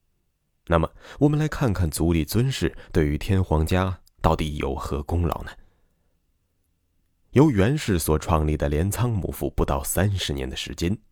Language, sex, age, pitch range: Chinese, male, 20-39, 75-95 Hz